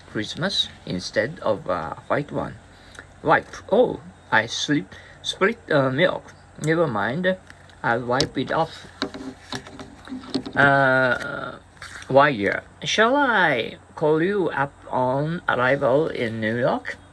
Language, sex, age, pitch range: Japanese, male, 50-69, 110-160 Hz